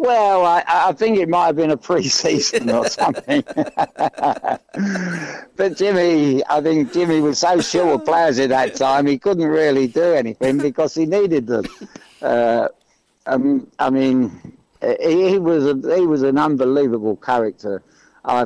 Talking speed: 155 wpm